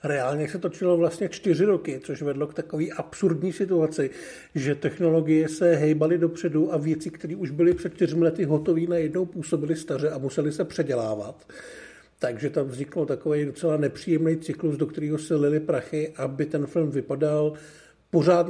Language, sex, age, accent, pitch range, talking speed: Czech, male, 50-69, native, 135-165 Hz, 160 wpm